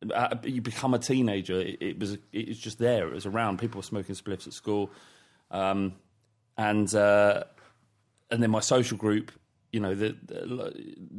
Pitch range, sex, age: 100-120 Hz, male, 30-49